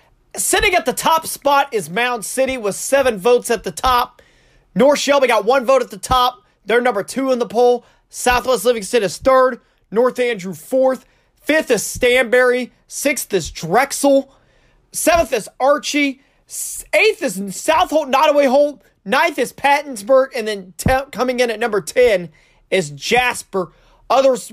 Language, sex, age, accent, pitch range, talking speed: English, male, 30-49, American, 245-300 Hz, 155 wpm